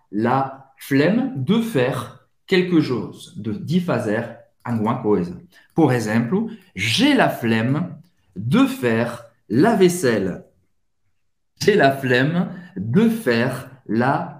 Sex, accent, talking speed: male, French, 110 wpm